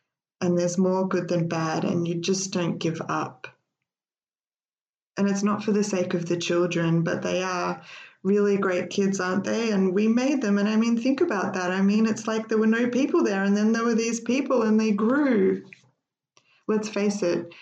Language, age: English, 20-39